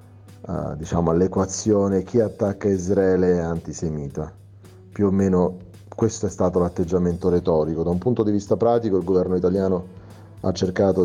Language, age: Italian, 30-49